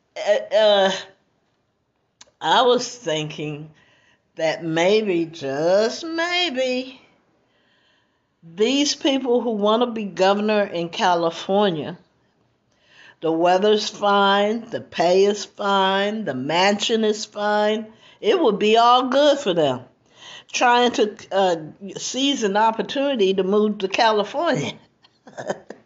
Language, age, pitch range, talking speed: English, 60-79, 170-240 Hz, 105 wpm